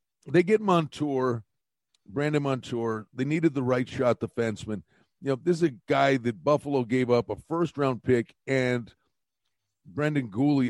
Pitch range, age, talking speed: 115-140 Hz, 50-69, 150 wpm